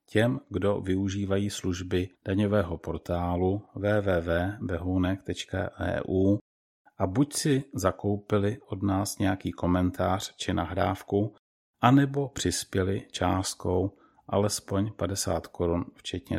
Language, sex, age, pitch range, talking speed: Czech, male, 40-59, 90-105 Hz, 90 wpm